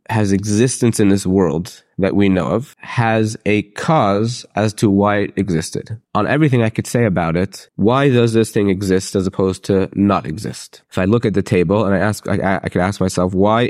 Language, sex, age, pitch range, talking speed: English, male, 30-49, 95-115 Hz, 215 wpm